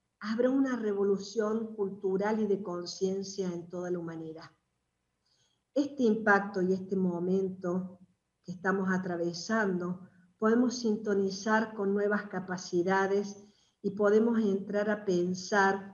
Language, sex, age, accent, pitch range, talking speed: Spanish, female, 50-69, American, 185-225 Hz, 110 wpm